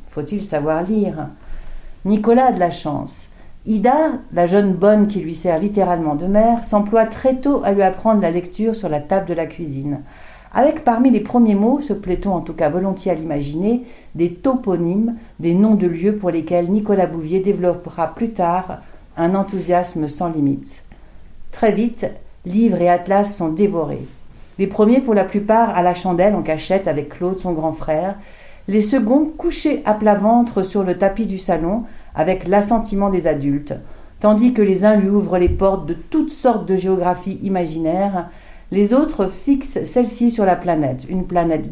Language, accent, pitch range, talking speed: French, French, 170-215 Hz, 175 wpm